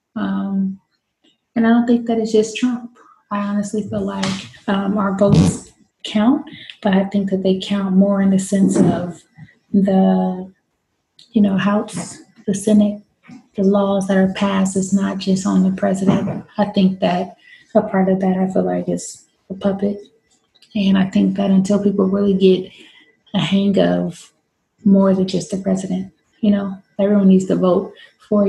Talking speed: 170 wpm